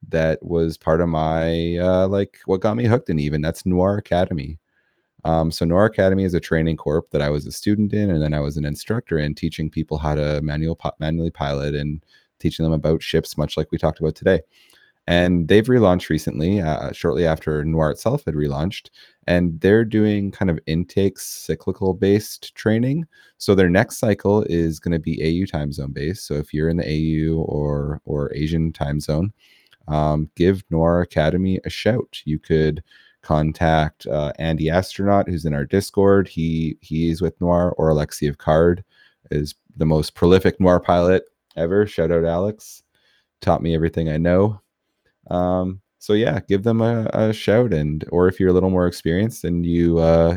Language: English